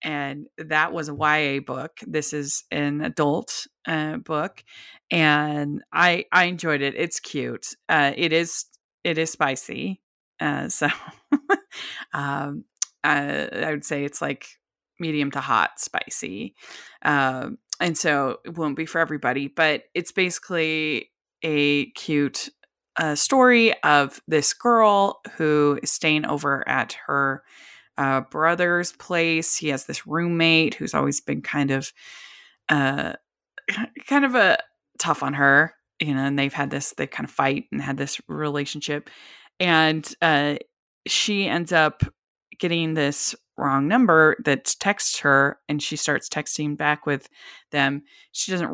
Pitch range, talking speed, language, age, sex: 140-170 Hz, 145 wpm, English, 20-39, female